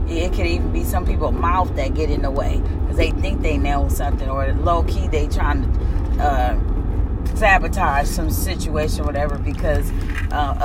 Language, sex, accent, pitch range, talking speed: English, female, American, 75-90 Hz, 180 wpm